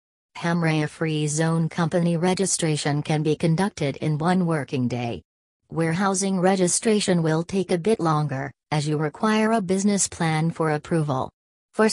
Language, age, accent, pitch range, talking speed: English, 40-59, American, 145-175 Hz, 140 wpm